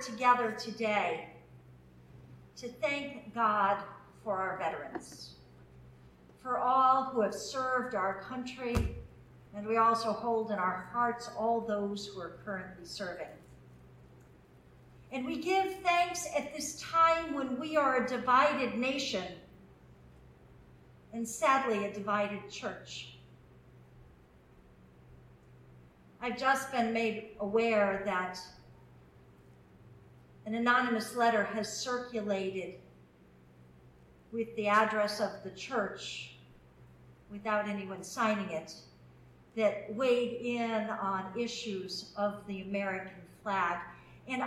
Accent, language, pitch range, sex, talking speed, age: American, English, 180-255 Hz, female, 105 wpm, 50-69